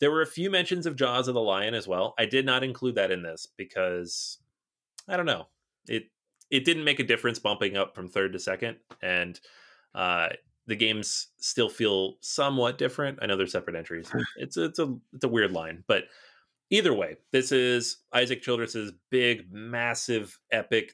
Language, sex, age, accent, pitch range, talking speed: English, male, 30-49, American, 95-130 Hz, 185 wpm